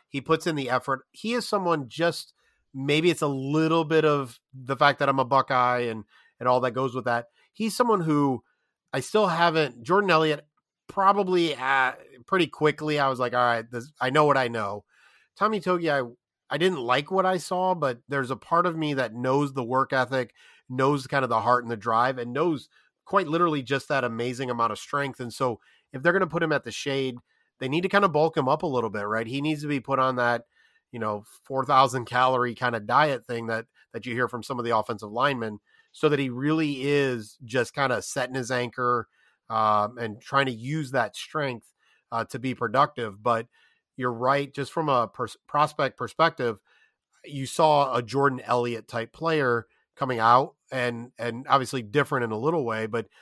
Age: 30-49